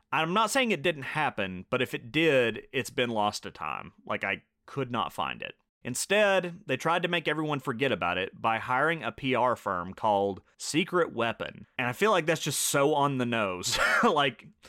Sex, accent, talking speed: male, American, 200 wpm